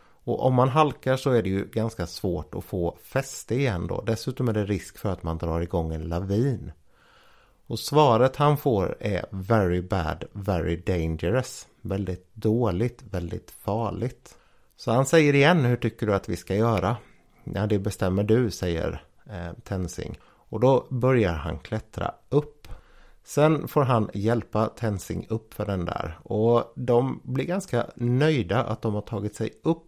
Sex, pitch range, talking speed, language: male, 95-125 Hz, 165 wpm, Swedish